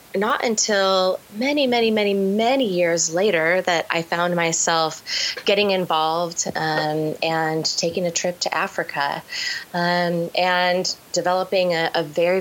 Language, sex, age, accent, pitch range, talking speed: English, female, 20-39, American, 160-185 Hz, 130 wpm